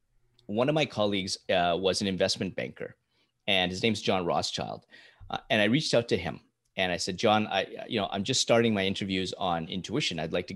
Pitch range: 95-120 Hz